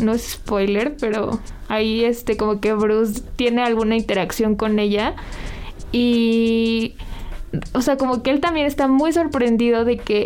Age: 20-39